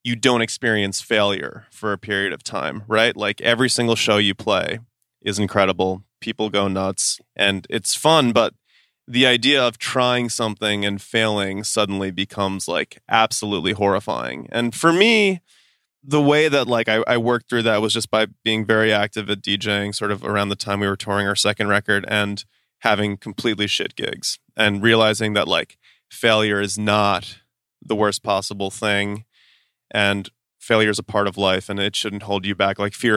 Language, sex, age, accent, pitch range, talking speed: English, male, 20-39, American, 100-120 Hz, 180 wpm